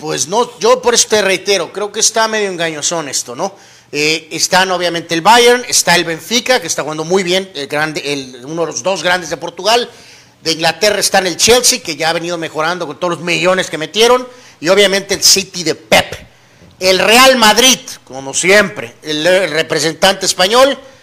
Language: Spanish